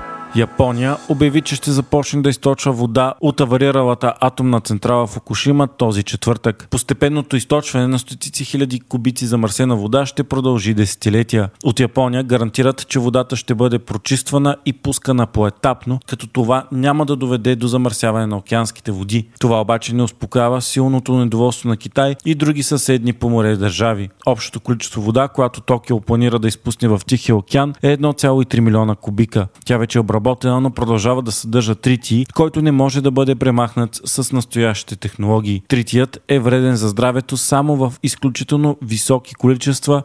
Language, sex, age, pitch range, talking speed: Bulgarian, male, 40-59, 115-135 Hz, 155 wpm